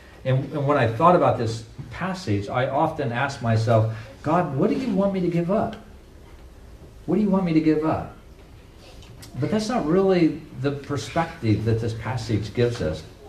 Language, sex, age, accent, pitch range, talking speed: English, male, 50-69, American, 110-145 Hz, 180 wpm